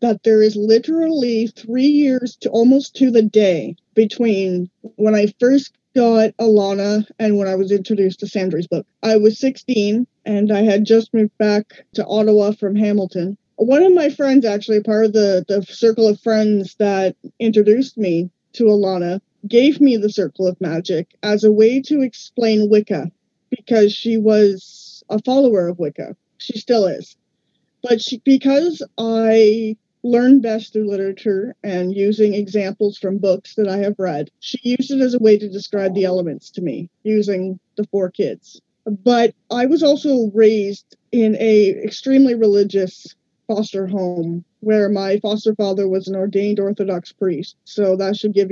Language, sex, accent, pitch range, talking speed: English, female, American, 195-225 Hz, 165 wpm